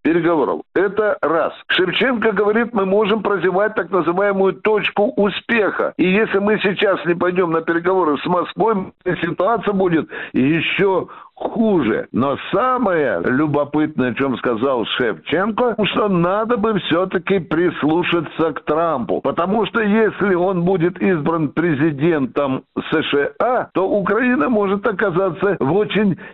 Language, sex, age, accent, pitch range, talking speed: Russian, male, 60-79, native, 165-210 Hz, 125 wpm